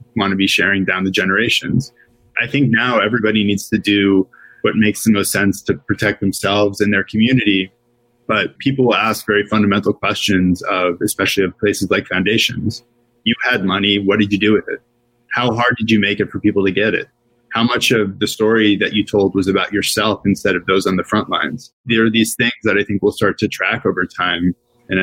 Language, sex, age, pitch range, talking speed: English, male, 20-39, 95-110 Hz, 215 wpm